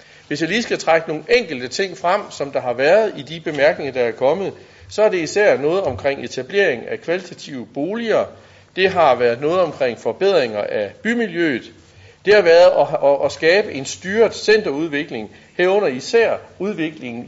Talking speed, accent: 165 wpm, native